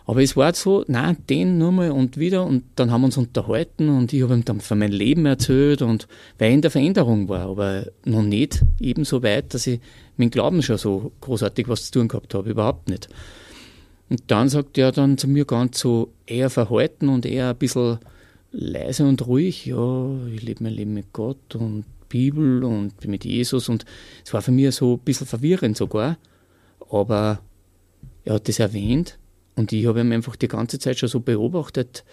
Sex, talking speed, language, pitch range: male, 205 wpm, German, 105-135 Hz